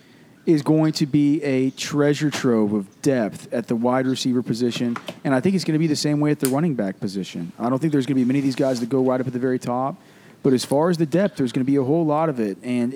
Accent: American